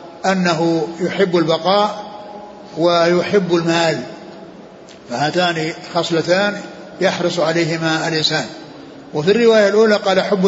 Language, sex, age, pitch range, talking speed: Arabic, male, 60-79, 175-195 Hz, 85 wpm